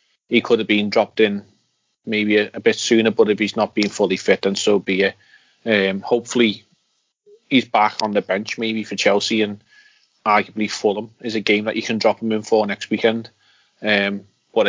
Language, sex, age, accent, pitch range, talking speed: English, male, 30-49, British, 100-115 Hz, 200 wpm